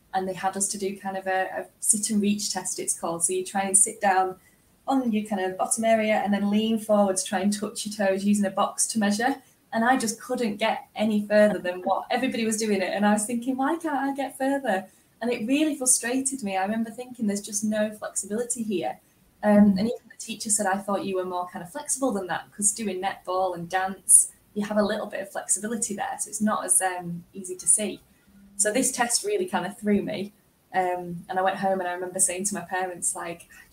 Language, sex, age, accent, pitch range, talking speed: English, female, 10-29, British, 185-225 Hz, 245 wpm